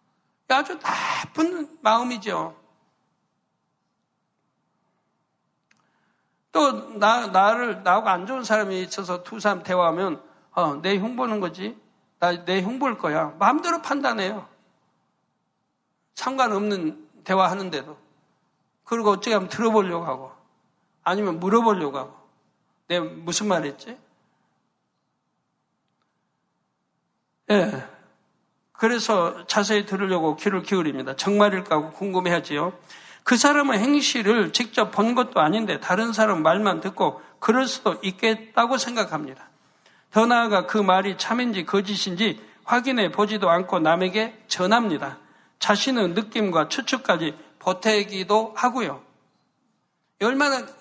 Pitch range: 185-230 Hz